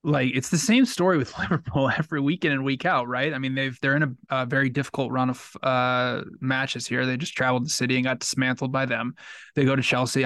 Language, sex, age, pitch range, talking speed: English, male, 20-39, 125-135 Hz, 240 wpm